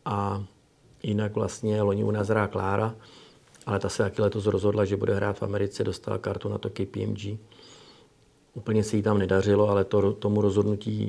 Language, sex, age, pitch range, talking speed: Czech, male, 40-59, 100-110 Hz, 180 wpm